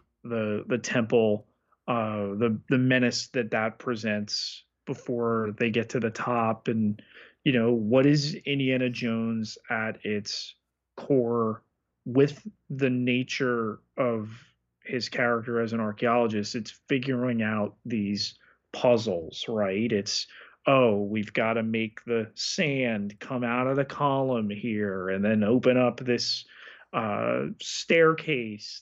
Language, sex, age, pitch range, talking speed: English, male, 30-49, 110-125 Hz, 130 wpm